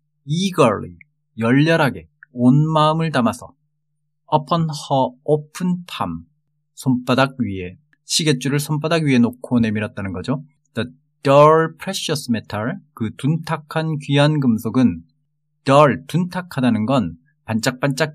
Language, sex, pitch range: Korean, male, 125-155 Hz